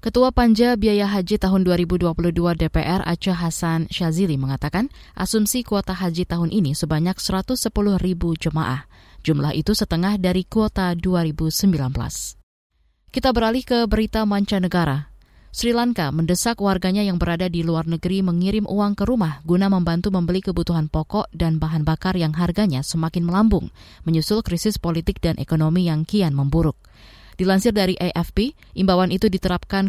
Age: 20-39